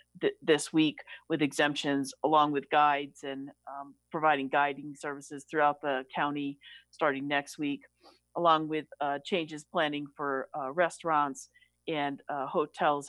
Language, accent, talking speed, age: English, American, 140 wpm, 50-69